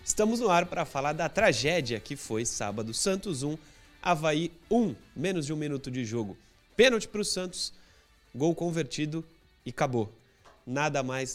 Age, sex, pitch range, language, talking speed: 30-49, male, 115-165 Hz, Portuguese, 160 wpm